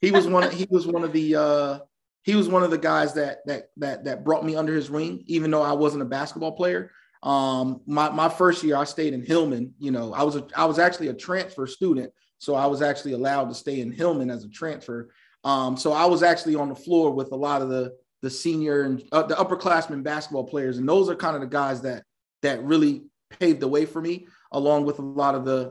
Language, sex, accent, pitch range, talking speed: English, male, American, 135-165 Hz, 245 wpm